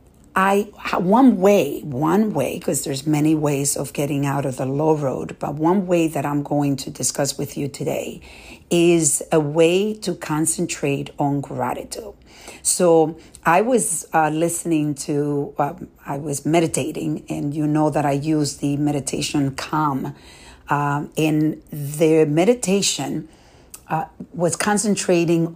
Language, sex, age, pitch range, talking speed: English, female, 50-69, 145-180 Hz, 140 wpm